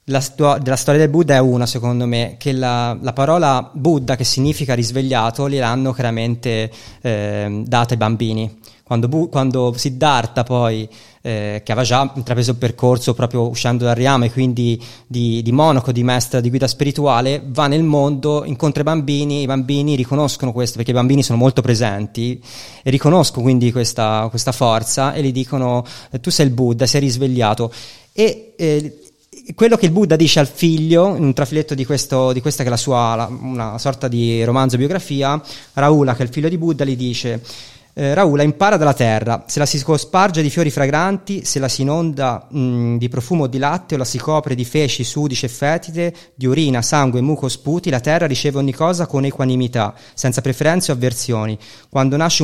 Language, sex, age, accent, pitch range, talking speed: Italian, male, 20-39, native, 120-145 Hz, 190 wpm